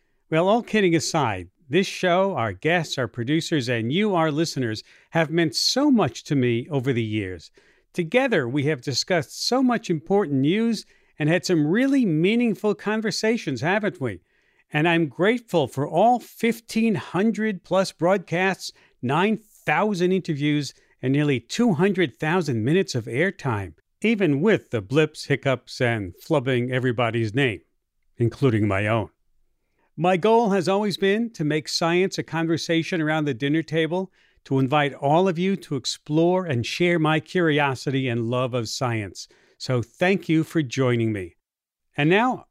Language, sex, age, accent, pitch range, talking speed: English, male, 50-69, American, 135-190 Hz, 145 wpm